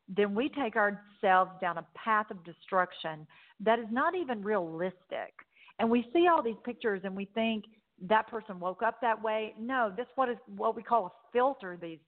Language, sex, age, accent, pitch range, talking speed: English, female, 40-59, American, 185-240 Hz, 185 wpm